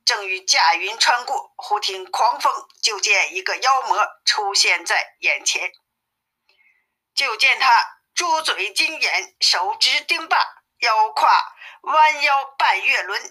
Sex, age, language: female, 50-69, Chinese